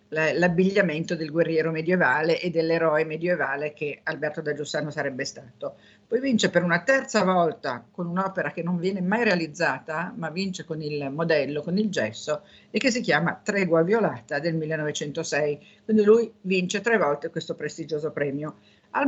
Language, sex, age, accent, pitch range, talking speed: Italian, female, 50-69, native, 155-190 Hz, 160 wpm